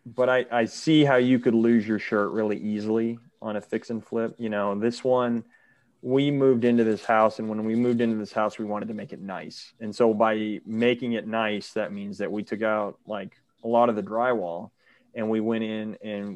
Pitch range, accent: 105-120 Hz, American